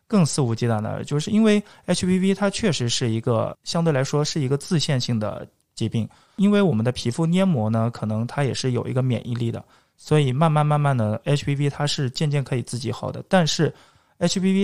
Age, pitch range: 20-39, 115-150 Hz